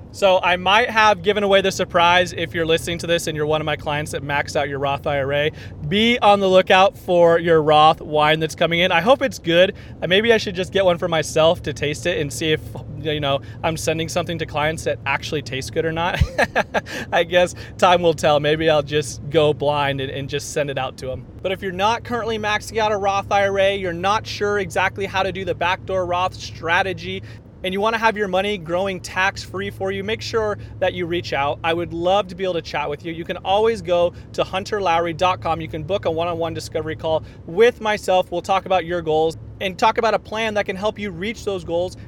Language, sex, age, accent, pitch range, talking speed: English, male, 30-49, American, 150-195 Hz, 235 wpm